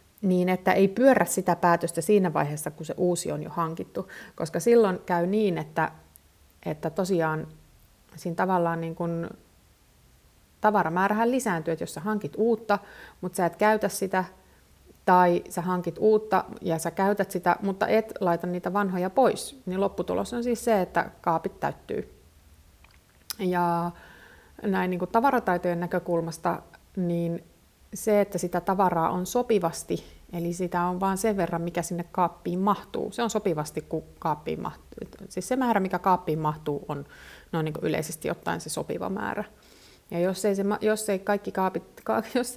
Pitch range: 165-200 Hz